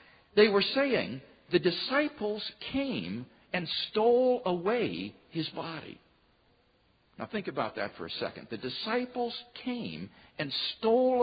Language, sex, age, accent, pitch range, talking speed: English, male, 50-69, American, 175-245 Hz, 125 wpm